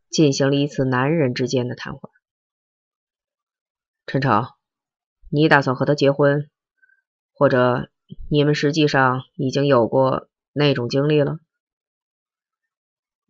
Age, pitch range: 20-39, 125-165 Hz